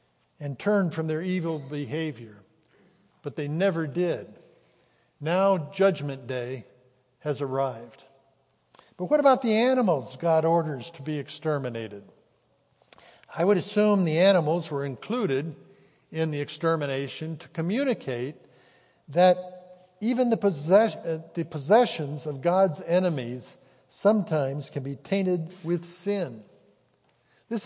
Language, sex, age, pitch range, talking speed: English, male, 60-79, 140-185 Hz, 115 wpm